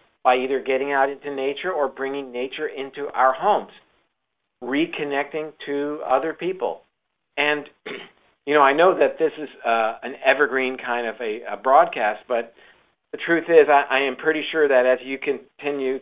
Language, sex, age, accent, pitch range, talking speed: English, male, 50-69, American, 125-155 Hz, 170 wpm